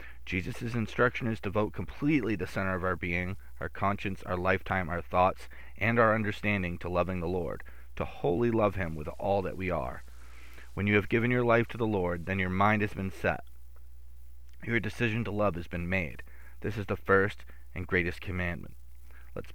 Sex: male